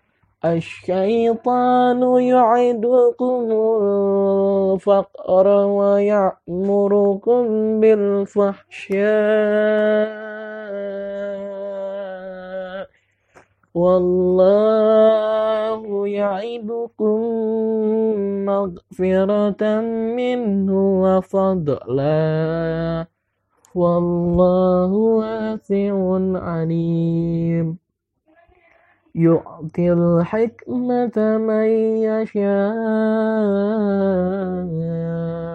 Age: 20-39